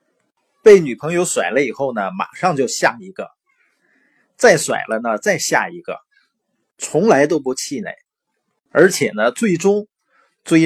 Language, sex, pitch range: Chinese, male, 125-190 Hz